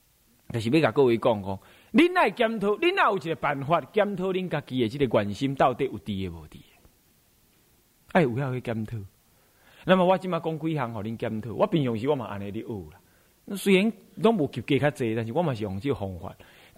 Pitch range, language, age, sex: 115-190 Hz, Chinese, 30-49, male